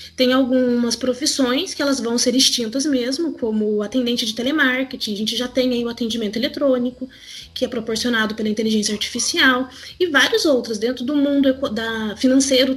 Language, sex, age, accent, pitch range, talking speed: Portuguese, female, 20-39, Brazilian, 240-315 Hz, 165 wpm